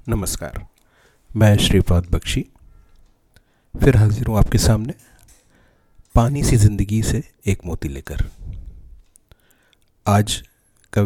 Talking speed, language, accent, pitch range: 100 wpm, Hindi, native, 90-115 Hz